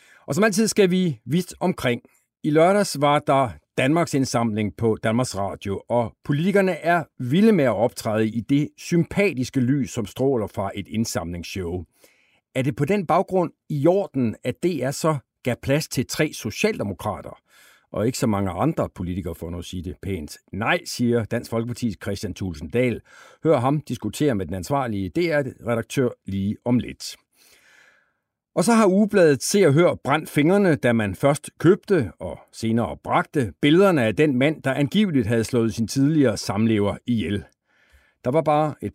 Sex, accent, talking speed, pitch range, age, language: male, native, 165 wpm, 110-155 Hz, 60-79, Danish